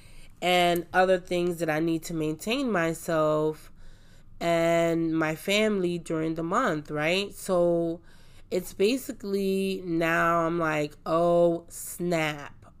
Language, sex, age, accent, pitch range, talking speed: English, female, 20-39, American, 160-185 Hz, 115 wpm